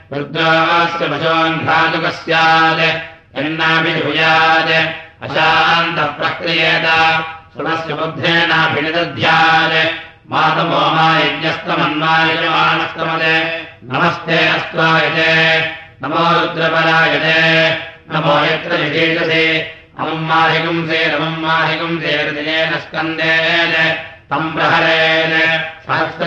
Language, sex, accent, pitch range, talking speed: Russian, male, Indian, 160-165 Hz, 45 wpm